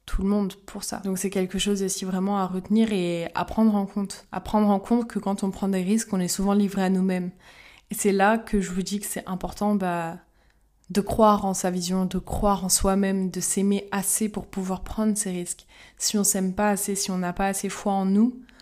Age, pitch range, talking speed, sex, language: 20-39, 180-200 Hz, 240 wpm, female, French